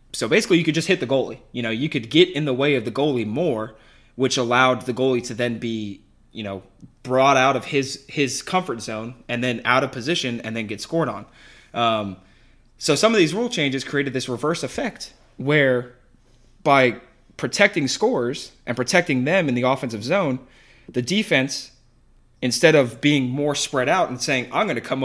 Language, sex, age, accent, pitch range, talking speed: English, male, 20-39, American, 120-155 Hz, 195 wpm